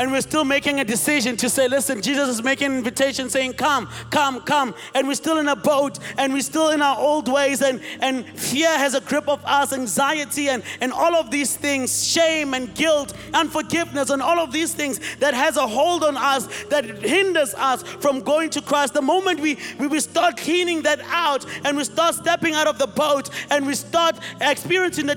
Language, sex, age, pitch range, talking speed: English, male, 30-49, 275-325 Hz, 215 wpm